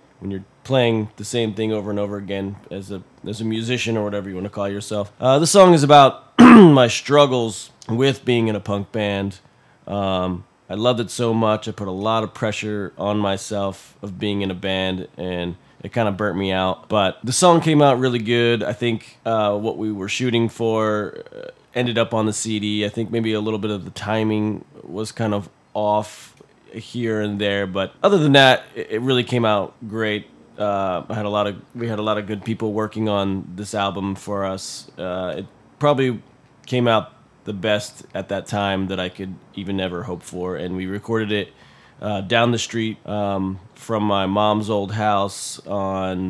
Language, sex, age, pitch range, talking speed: English, male, 20-39, 95-115 Hz, 205 wpm